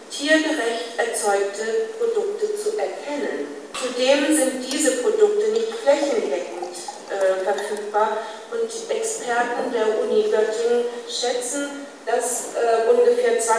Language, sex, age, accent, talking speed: German, female, 40-59, German, 100 wpm